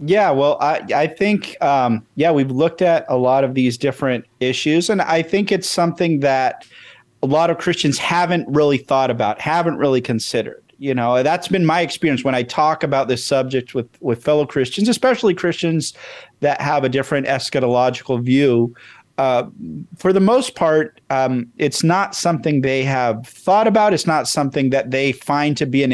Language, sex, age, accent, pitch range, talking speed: English, male, 40-59, American, 125-165 Hz, 185 wpm